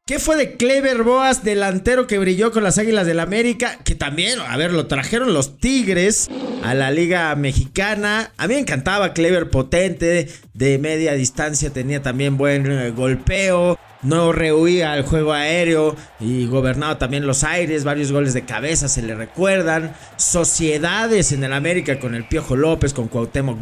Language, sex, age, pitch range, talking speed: English, male, 40-59, 140-195 Hz, 165 wpm